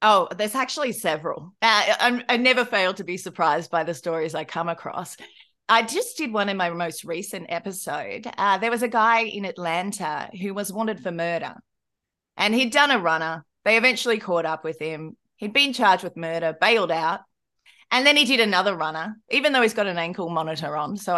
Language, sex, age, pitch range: English, female, 30-49, 170-240 Hz